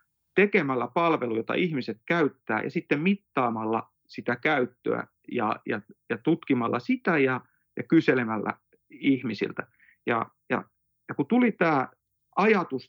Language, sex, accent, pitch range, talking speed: Finnish, male, native, 120-170 Hz, 120 wpm